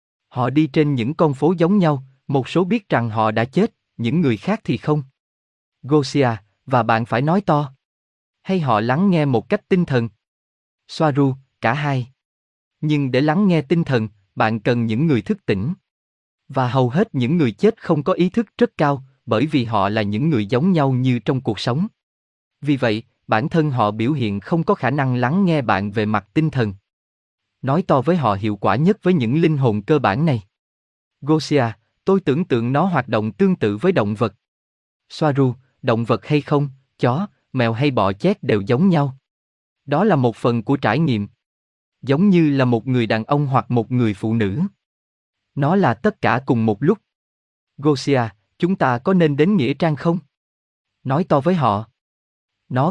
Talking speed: 195 wpm